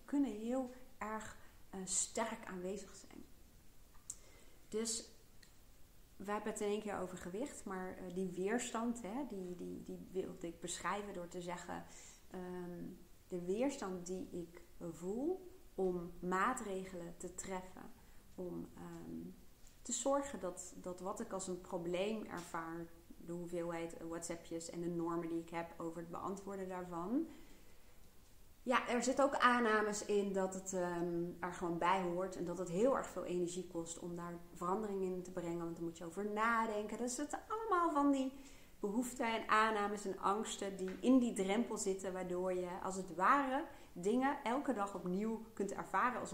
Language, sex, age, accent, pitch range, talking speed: Dutch, female, 40-59, Dutch, 175-235 Hz, 165 wpm